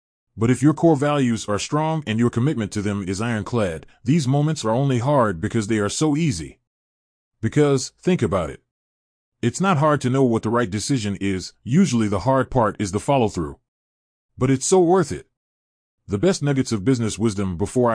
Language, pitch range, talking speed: English, 100-135 Hz, 190 wpm